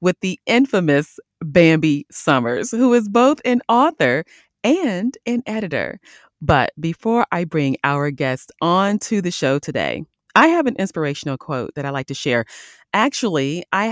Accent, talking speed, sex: American, 155 wpm, female